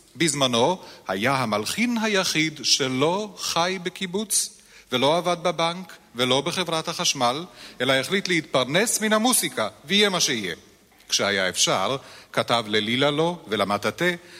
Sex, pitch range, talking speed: male, 125-180 Hz, 115 wpm